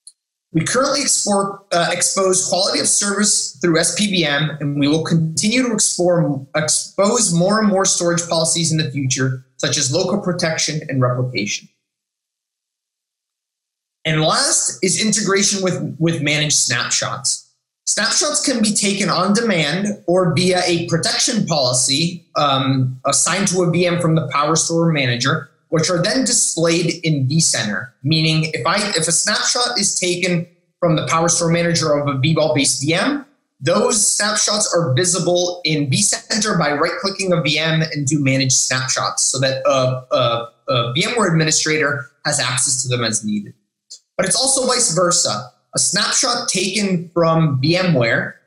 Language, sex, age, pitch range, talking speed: English, male, 30-49, 145-185 Hz, 145 wpm